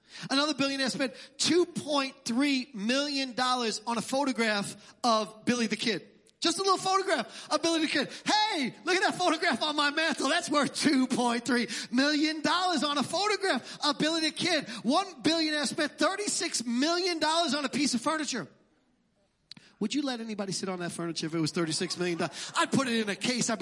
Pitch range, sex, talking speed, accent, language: 230-305 Hz, male, 180 wpm, American, English